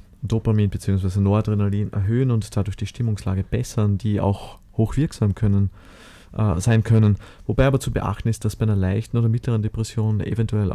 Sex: male